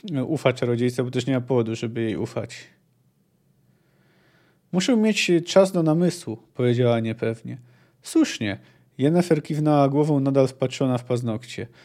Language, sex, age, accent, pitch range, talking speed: Polish, male, 40-59, native, 125-175 Hz, 125 wpm